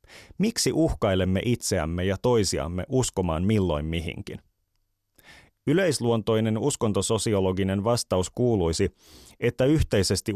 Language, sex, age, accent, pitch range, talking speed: Finnish, male, 30-49, native, 95-120 Hz, 80 wpm